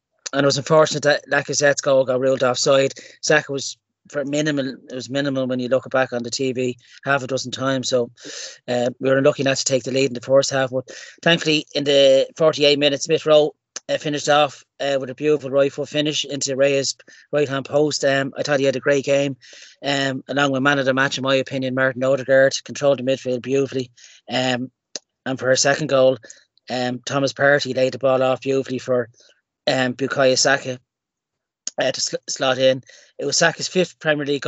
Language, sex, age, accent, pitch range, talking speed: English, male, 30-49, Irish, 130-145 Hz, 205 wpm